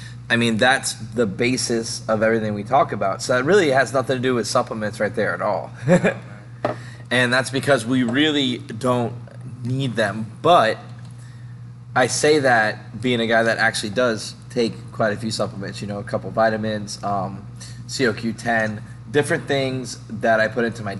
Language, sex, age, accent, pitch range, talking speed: English, male, 20-39, American, 110-125 Hz, 175 wpm